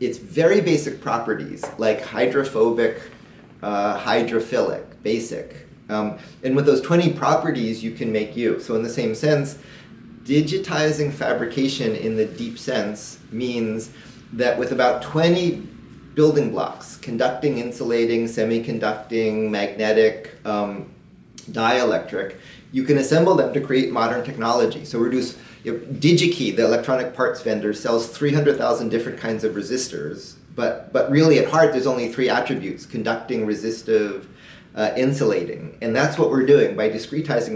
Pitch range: 110-145 Hz